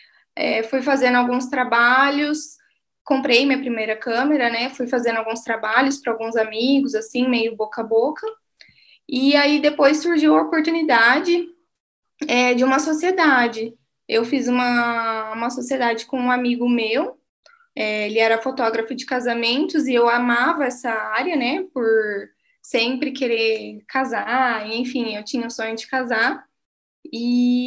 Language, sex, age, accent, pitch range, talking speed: Portuguese, female, 10-29, Brazilian, 230-285 Hz, 135 wpm